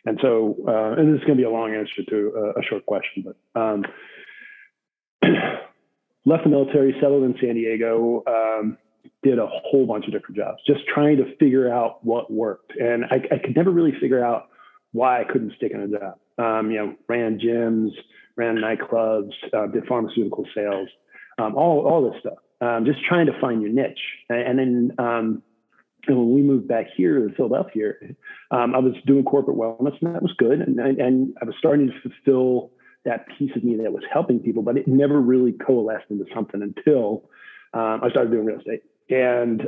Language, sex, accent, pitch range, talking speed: English, male, American, 115-135 Hz, 200 wpm